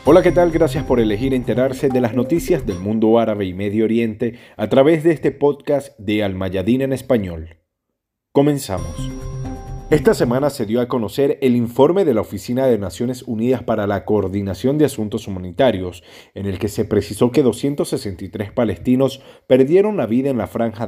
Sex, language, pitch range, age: male, Spanish, 100-135 Hz, 40-59